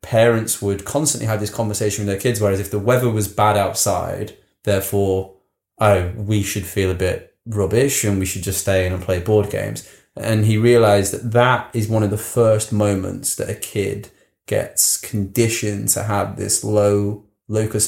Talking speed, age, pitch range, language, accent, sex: 185 wpm, 20-39, 100-125 Hz, English, British, male